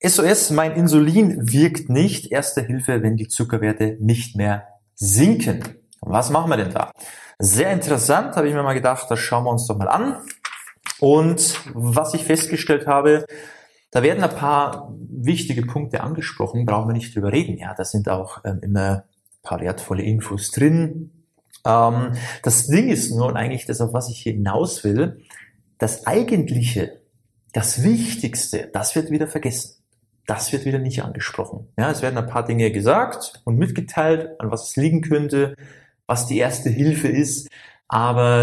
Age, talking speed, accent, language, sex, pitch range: 30-49, 165 wpm, German, German, male, 115-155 Hz